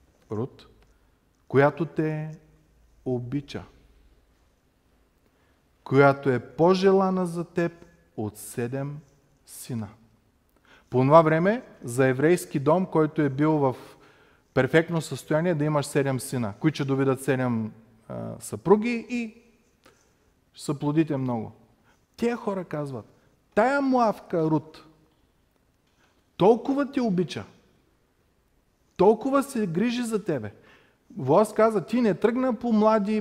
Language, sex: Bulgarian, male